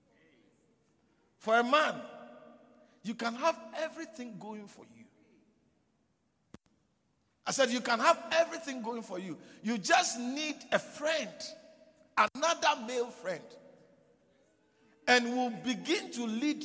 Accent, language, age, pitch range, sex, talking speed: Nigerian, English, 50-69, 195-305 Hz, male, 115 wpm